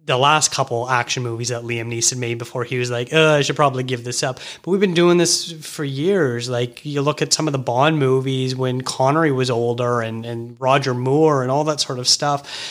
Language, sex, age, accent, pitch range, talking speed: English, male, 30-49, American, 130-150 Hz, 235 wpm